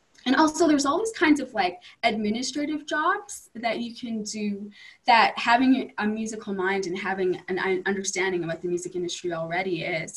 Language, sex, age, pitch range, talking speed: English, female, 20-39, 185-245 Hz, 175 wpm